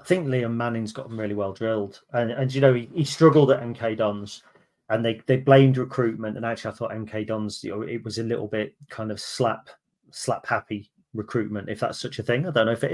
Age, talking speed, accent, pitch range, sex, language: 30-49, 245 wpm, British, 110-135 Hz, male, English